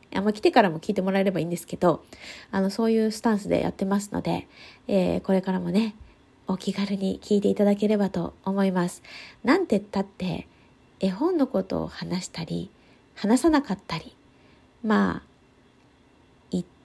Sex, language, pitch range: female, Japanese, 185-240 Hz